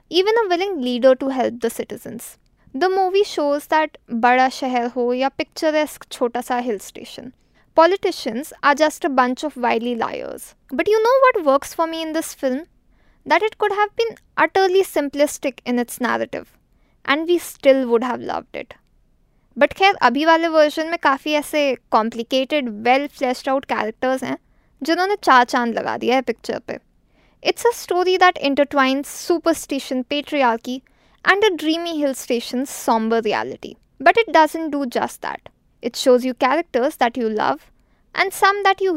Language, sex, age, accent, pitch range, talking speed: English, female, 20-39, Indian, 255-350 Hz, 160 wpm